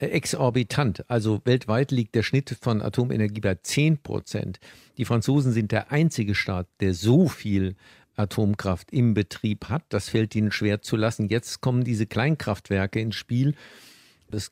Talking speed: 150 wpm